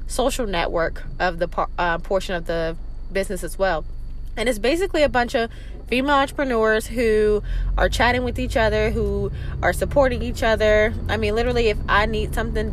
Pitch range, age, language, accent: 190-235 Hz, 20-39, English, American